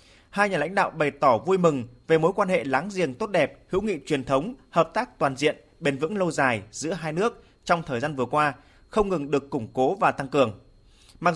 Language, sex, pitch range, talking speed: Vietnamese, male, 140-185 Hz, 240 wpm